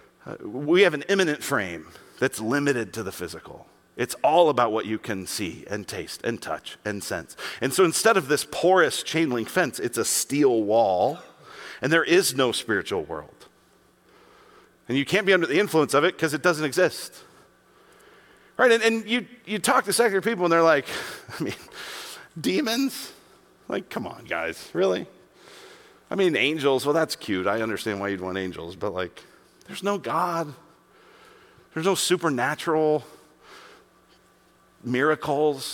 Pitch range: 135-225 Hz